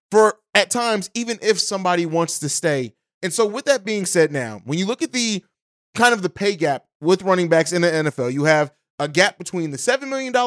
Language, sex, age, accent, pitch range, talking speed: English, male, 20-39, American, 170-220 Hz, 230 wpm